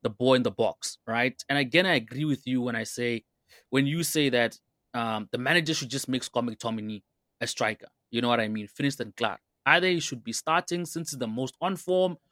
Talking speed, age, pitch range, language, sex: 230 wpm, 20-39, 115-155 Hz, English, male